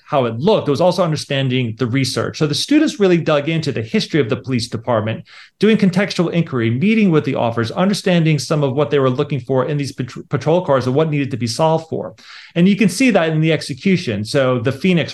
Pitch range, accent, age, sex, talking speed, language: 130-165 Hz, American, 30-49, male, 235 wpm, English